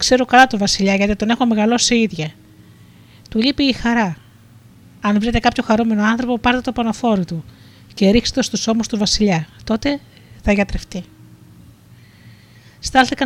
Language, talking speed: Greek, 150 wpm